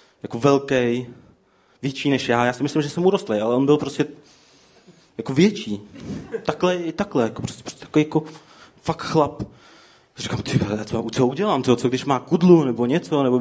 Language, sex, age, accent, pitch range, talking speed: Czech, male, 30-49, native, 130-180 Hz, 185 wpm